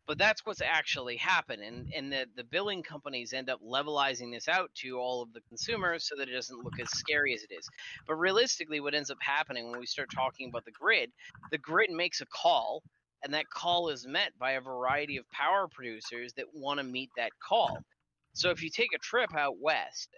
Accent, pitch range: American, 125-155 Hz